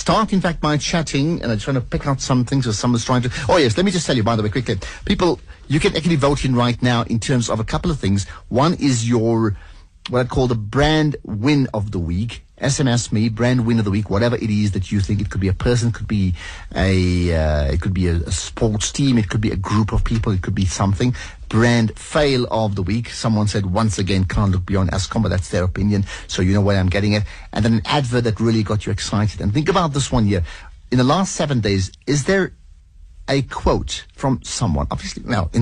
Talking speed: 250 wpm